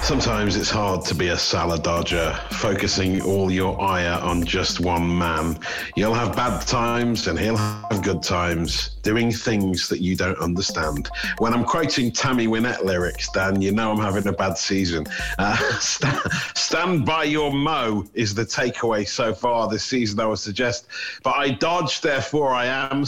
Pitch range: 90-115 Hz